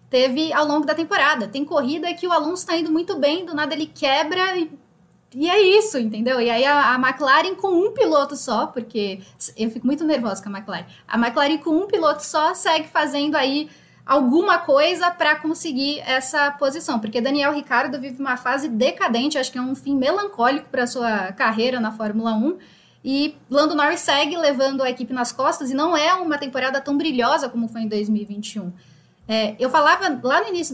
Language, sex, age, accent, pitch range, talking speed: Portuguese, female, 10-29, Brazilian, 235-305 Hz, 190 wpm